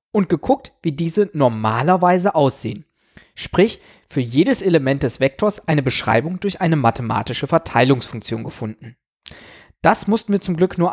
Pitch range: 130-185 Hz